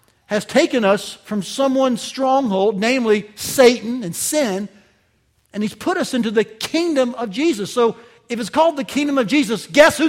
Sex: male